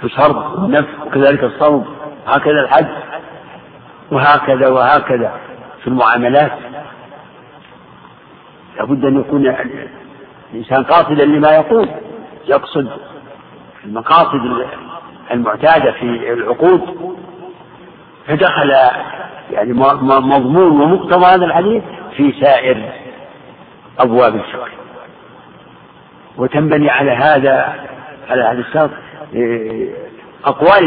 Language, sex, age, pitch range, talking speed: Arabic, male, 60-79, 135-195 Hz, 80 wpm